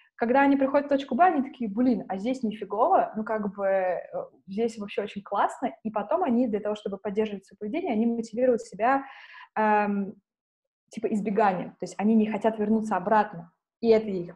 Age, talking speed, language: 20-39, 185 wpm, Russian